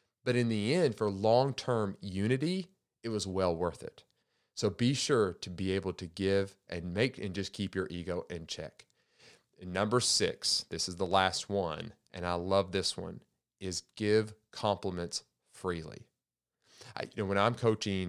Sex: male